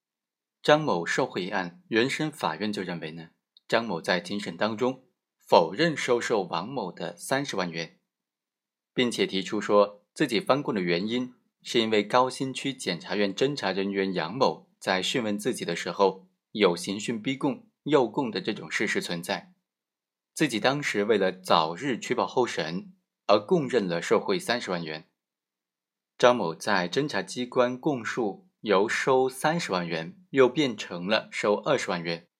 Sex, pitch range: male, 100-140 Hz